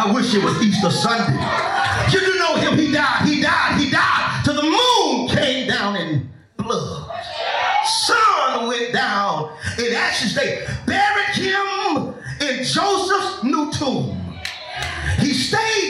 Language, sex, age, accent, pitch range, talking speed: English, male, 30-49, American, 260-385 Hz, 145 wpm